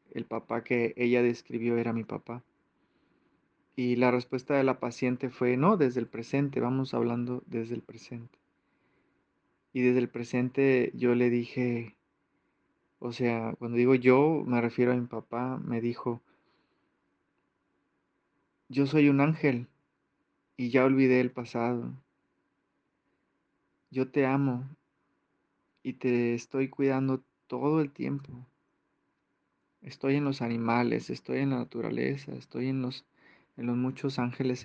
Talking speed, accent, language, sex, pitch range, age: 135 wpm, Mexican, Spanish, male, 120-135 Hz, 30-49